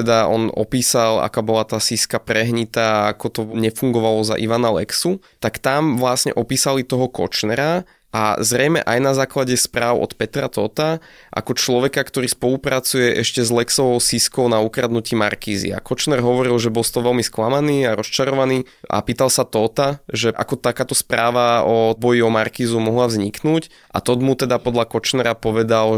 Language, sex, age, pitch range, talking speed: Slovak, male, 20-39, 110-130 Hz, 165 wpm